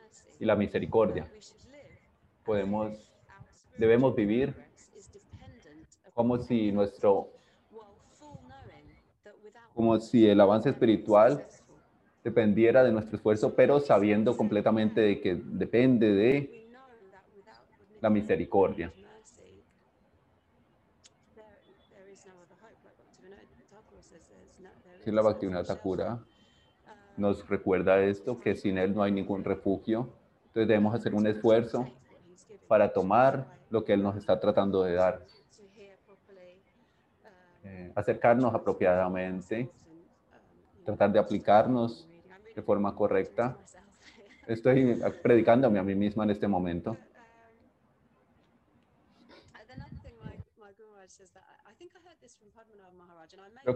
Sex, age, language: male, 30-49, English